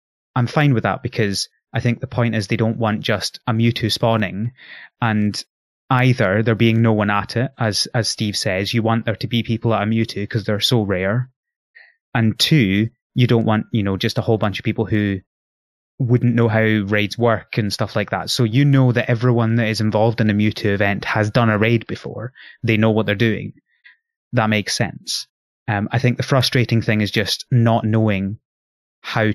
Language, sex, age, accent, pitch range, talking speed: English, male, 20-39, British, 105-120 Hz, 205 wpm